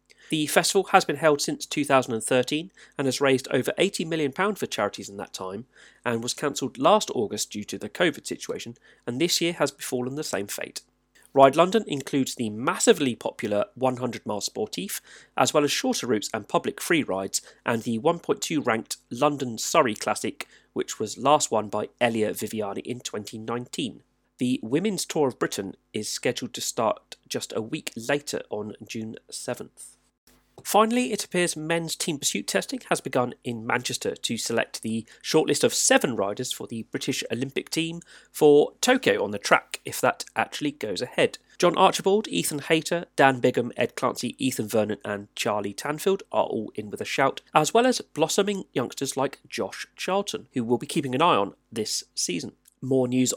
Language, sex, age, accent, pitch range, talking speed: English, male, 30-49, British, 120-170 Hz, 175 wpm